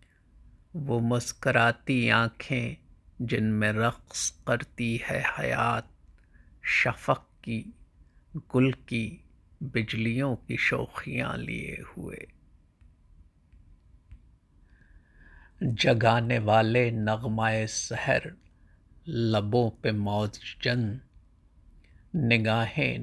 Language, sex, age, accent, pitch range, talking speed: Hindi, male, 50-69, native, 90-120 Hz, 70 wpm